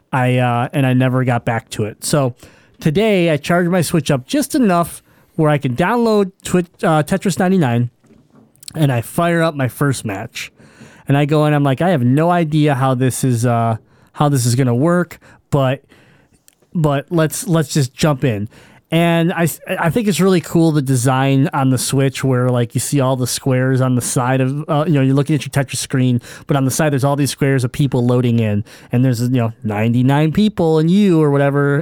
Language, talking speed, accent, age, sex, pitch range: English, 215 wpm, American, 30-49, male, 130-155 Hz